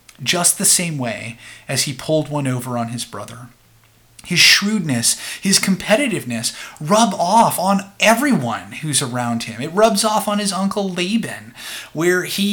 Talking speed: 155 wpm